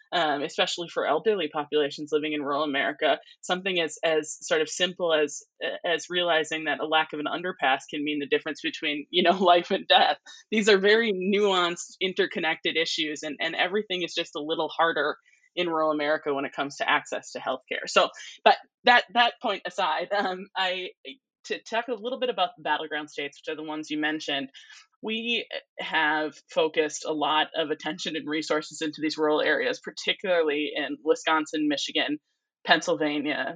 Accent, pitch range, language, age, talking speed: American, 155-190 Hz, English, 20-39, 175 wpm